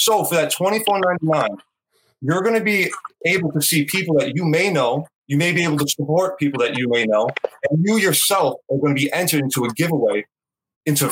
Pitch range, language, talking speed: 140-180 Hz, English, 225 wpm